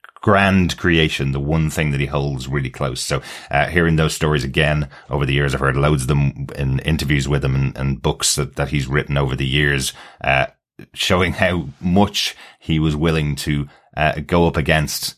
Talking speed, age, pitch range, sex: 200 wpm, 30-49, 70-80 Hz, male